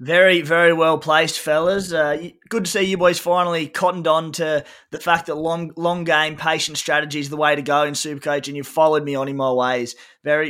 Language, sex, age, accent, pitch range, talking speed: English, male, 20-39, Australian, 150-170 Hz, 225 wpm